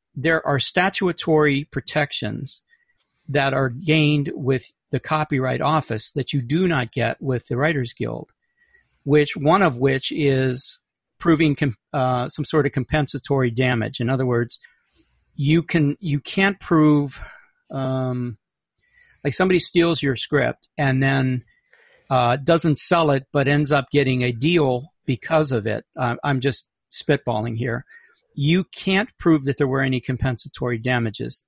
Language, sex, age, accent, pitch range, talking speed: English, male, 50-69, American, 130-165 Hz, 145 wpm